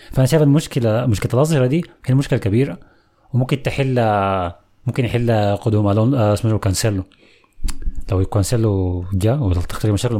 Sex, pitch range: male, 100-130 Hz